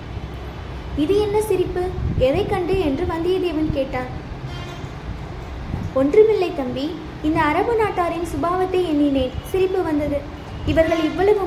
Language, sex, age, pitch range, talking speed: Tamil, female, 20-39, 295-370 Hz, 100 wpm